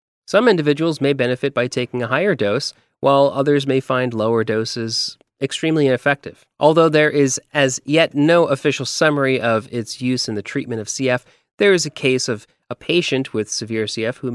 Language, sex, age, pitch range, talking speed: English, male, 30-49, 115-145 Hz, 185 wpm